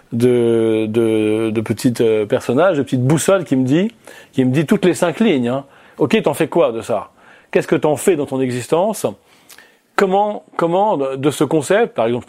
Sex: male